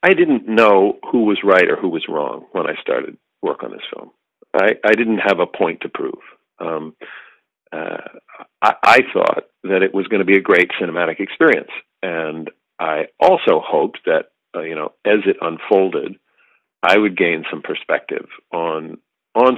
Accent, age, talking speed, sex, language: American, 50-69, 180 wpm, male, English